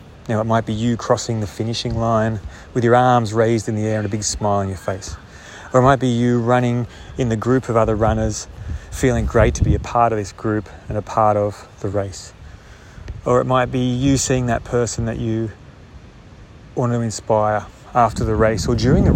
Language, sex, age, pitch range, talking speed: English, male, 30-49, 100-120 Hz, 215 wpm